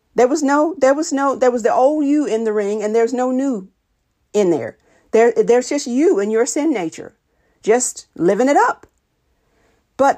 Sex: female